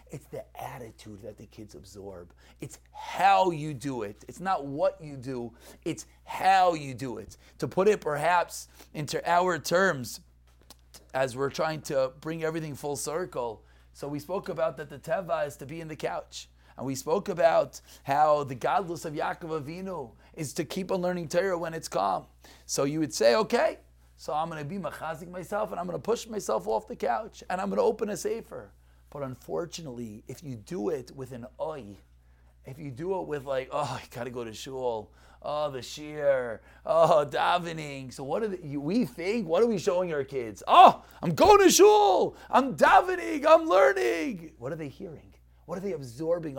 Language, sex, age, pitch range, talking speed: English, male, 30-49, 130-175 Hz, 190 wpm